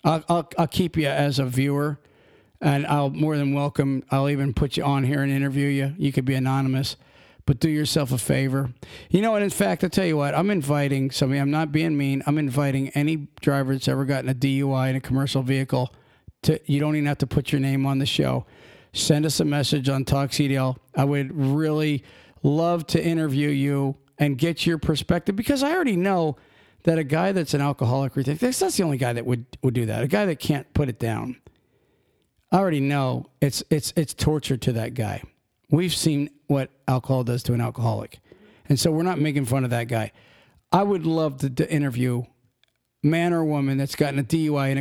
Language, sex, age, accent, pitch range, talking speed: English, male, 50-69, American, 130-155 Hz, 210 wpm